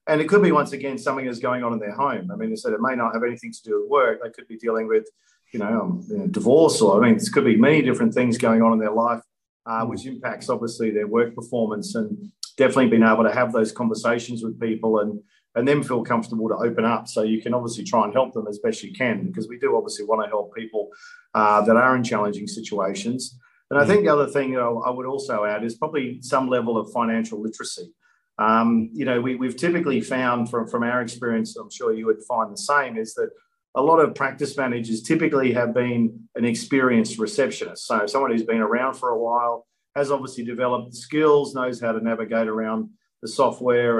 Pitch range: 115-145 Hz